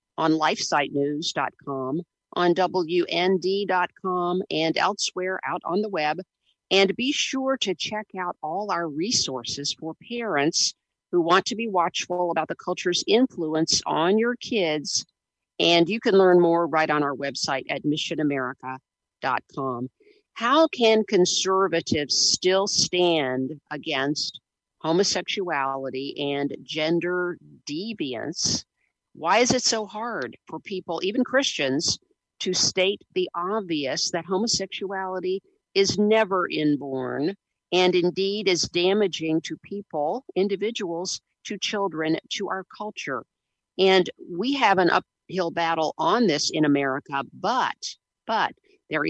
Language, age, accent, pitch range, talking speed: English, 50-69, American, 150-195 Hz, 120 wpm